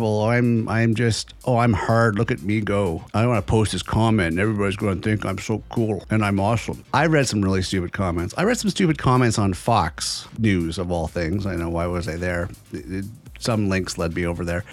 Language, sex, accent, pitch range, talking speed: English, male, American, 100-140 Hz, 225 wpm